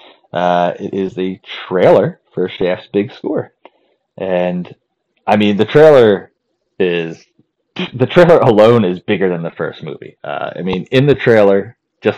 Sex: male